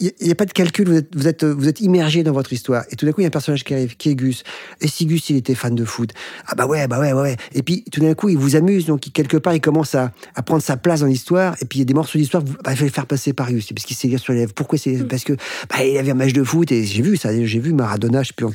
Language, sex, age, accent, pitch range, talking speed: French, male, 40-59, French, 125-160 Hz, 345 wpm